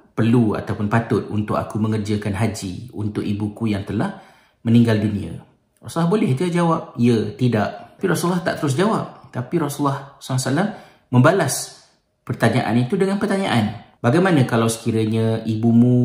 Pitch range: 105-125 Hz